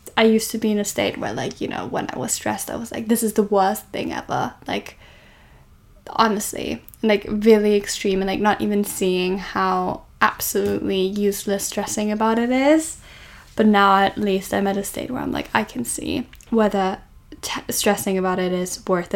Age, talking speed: 10-29, 190 wpm